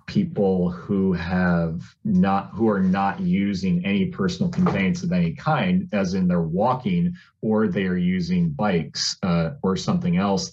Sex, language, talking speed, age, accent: male, English, 150 wpm, 30-49, American